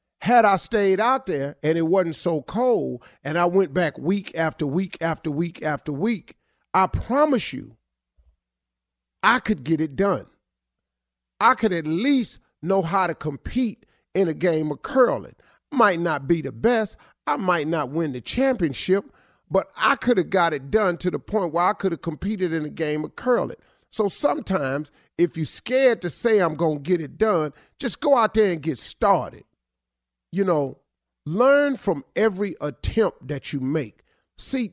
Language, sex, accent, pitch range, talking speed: English, male, American, 150-200 Hz, 180 wpm